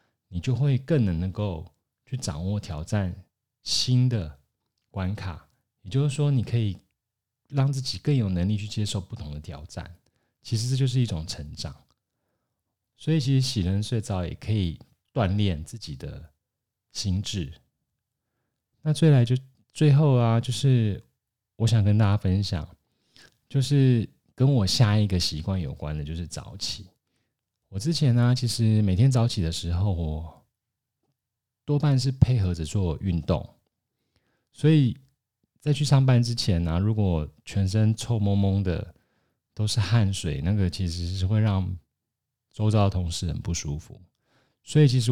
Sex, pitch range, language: male, 90-120 Hz, Chinese